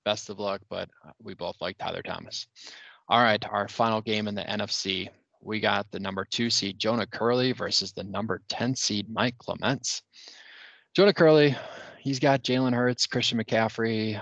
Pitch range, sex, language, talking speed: 100-120 Hz, male, English, 170 wpm